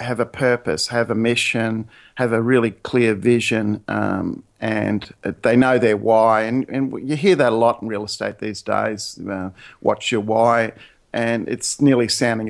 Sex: male